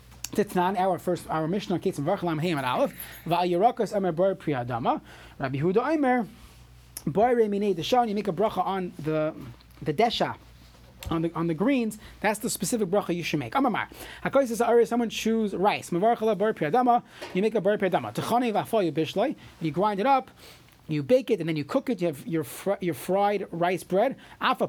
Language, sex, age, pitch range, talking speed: English, male, 30-49, 165-220 Hz, 200 wpm